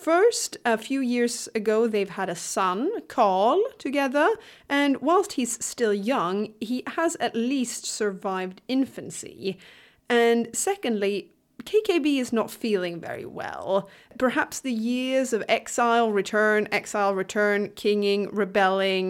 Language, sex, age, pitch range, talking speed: English, female, 30-49, 195-265 Hz, 125 wpm